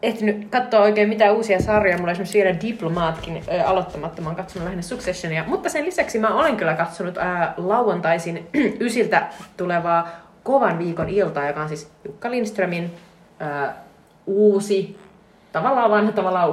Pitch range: 160-215 Hz